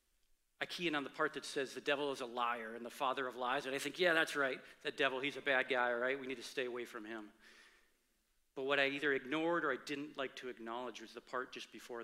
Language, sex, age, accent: English, male, 40-59, American